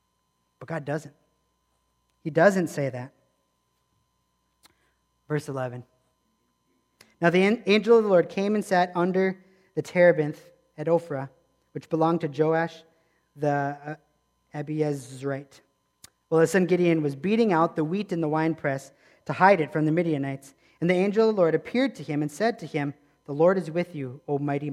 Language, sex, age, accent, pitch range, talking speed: English, male, 40-59, American, 135-175 Hz, 165 wpm